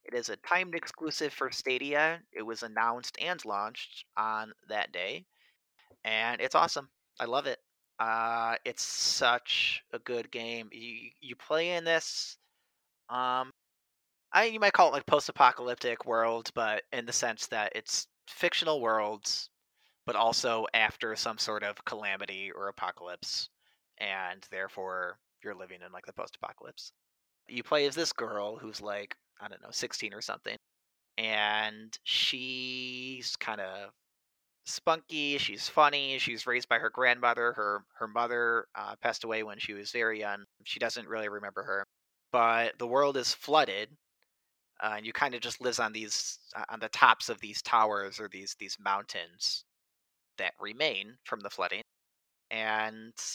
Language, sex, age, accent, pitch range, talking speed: English, male, 30-49, American, 105-130 Hz, 155 wpm